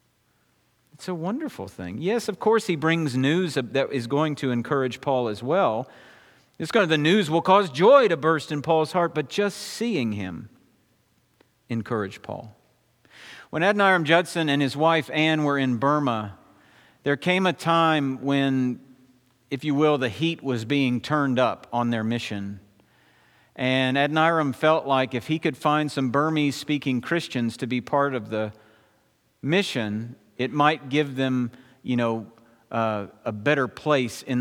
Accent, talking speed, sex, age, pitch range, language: American, 160 wpm, male, 50-69, 125-160 Hz, English